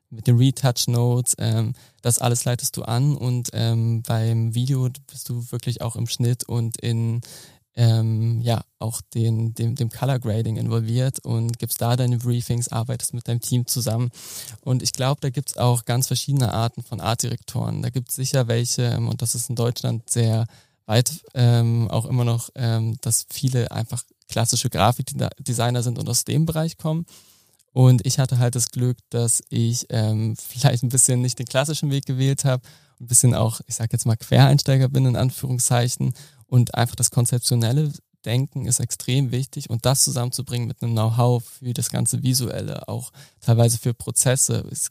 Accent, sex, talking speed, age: German, male, 180 wpm, 20-39